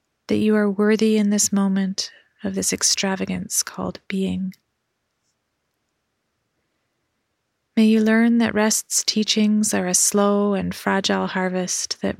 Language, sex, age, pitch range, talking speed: English, female, 30-49, 185-210 Hz, 125 wpm